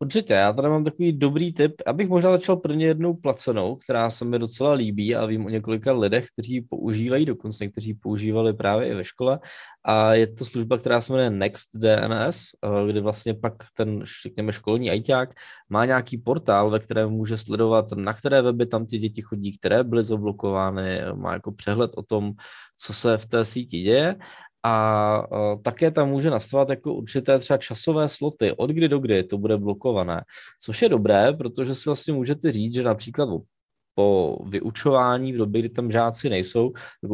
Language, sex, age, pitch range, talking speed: Czech, male, 20-39, 105-130 Hz, 180 wpm